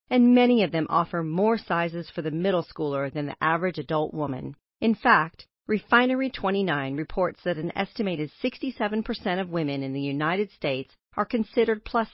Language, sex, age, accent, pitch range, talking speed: English, female, 40-59, American, 160-210 Hz, 165 wpm